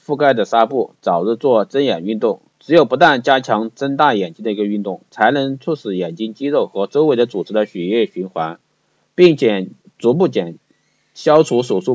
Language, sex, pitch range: Chinese, male, 95-130 Hz